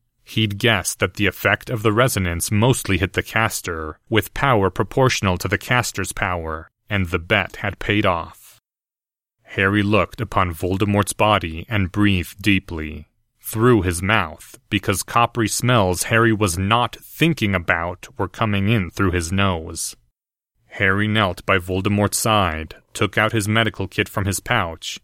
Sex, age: male, 30-49